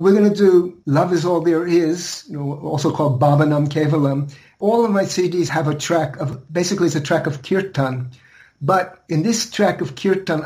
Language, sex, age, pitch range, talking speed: English, male, 60-79, 130-155 Hz, 190 wpm